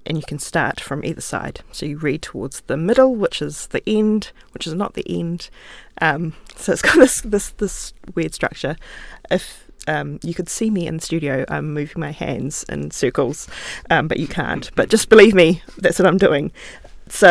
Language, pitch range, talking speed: English, 150-185 Hz, 205 wpm